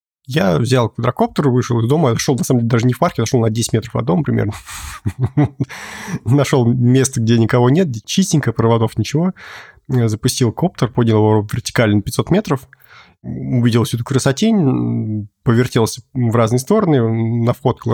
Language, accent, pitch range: Russian, native, 110-135 Hz